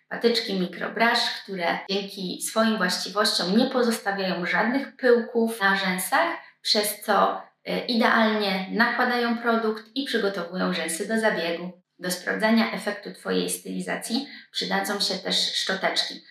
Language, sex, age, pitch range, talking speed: Polish, female, 20-39, 185-220 Hz, 115 wpm